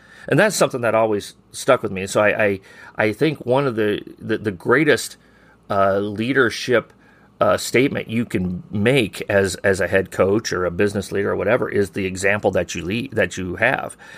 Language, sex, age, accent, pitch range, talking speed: English, male, 30-49, American, 100-120 Hz, 200 wpm